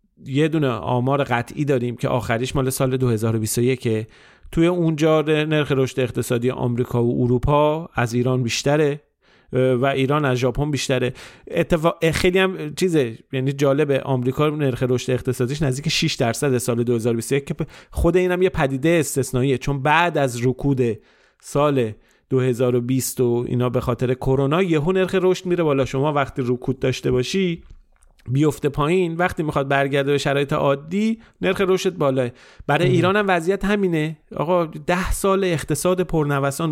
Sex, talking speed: male, 145 wpm